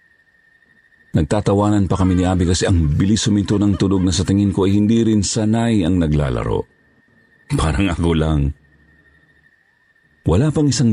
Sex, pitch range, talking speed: male, 85-120 Hz, 150 wpm